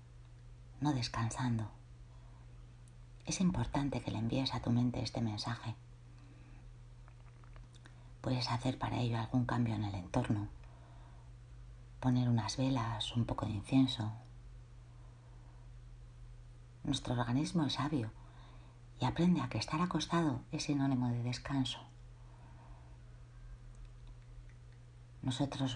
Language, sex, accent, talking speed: Spanish, female, Spanish, 100 wpm